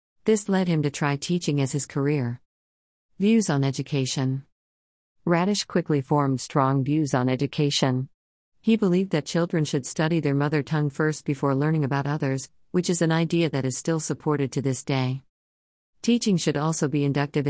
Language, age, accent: English, 40-59, American